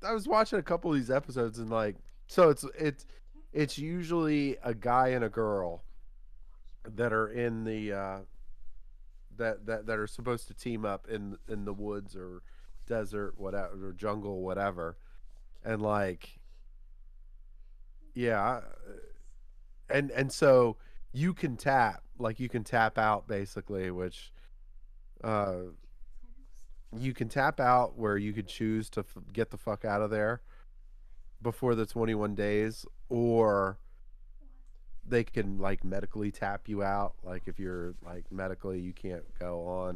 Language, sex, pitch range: English, male, 95-120 Hz